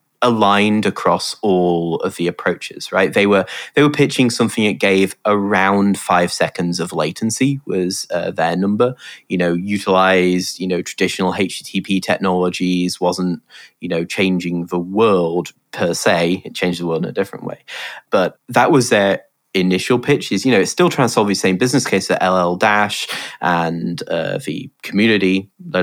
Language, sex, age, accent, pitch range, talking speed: English, male, 20-39, British, 90-110 Hz, 170 wpm